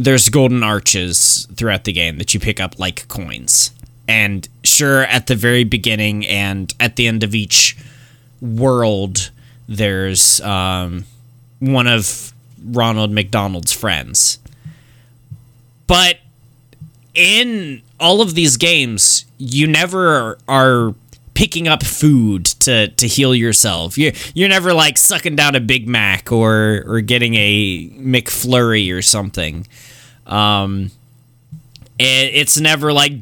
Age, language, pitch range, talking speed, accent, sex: 20-39, English, 105-135 Hz, 125 wpm, American, male